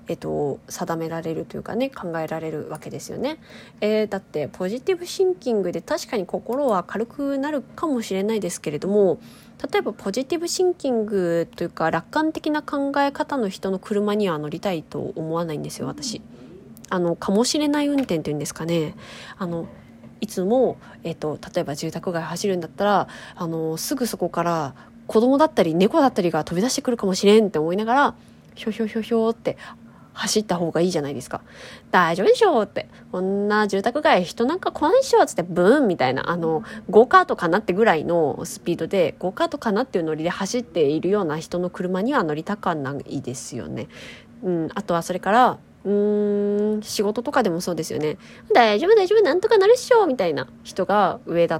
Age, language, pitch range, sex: 20-39, Japanese, 165-245 Hz, female